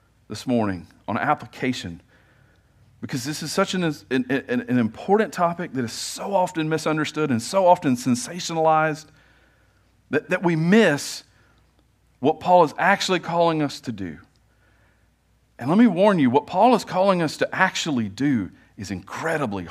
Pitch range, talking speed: 115-170 Hz, 150 wpm